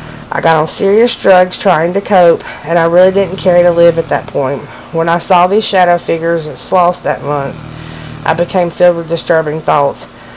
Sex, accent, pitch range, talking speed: female, American, 155-180 Hz, 205 wpm